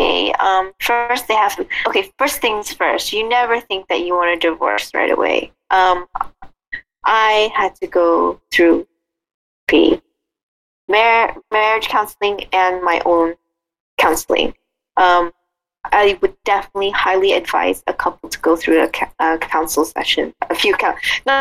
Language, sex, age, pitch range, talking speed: English, female, 20-39, 175-260 Hz, 140 wpm